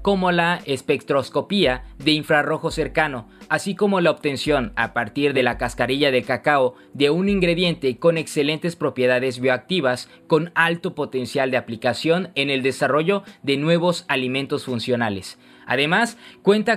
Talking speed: 135 wpm